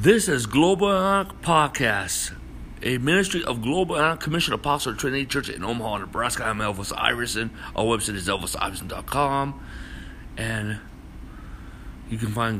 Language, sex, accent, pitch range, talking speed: English, male, American, 105-130 Hz, 135 wpm